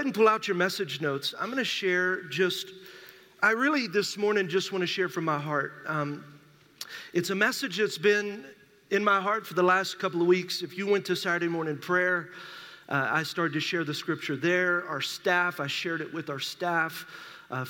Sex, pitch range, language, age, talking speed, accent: male, 160-195 Hz, English, 40-59, 205 wpm, American